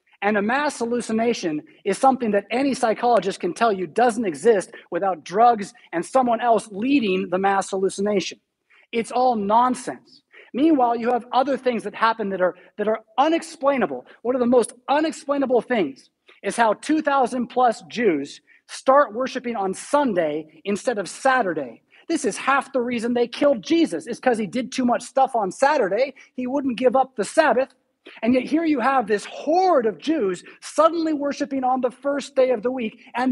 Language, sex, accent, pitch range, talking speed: English, male, American, 220-270 Hz, 175 wpm